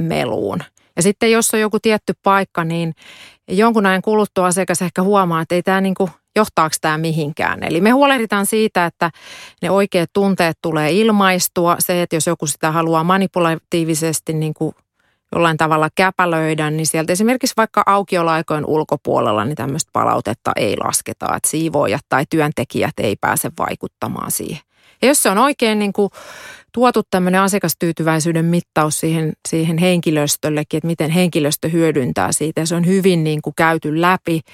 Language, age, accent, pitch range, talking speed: Finnish, 30-49, native, 160-200 Hz, 155 wpm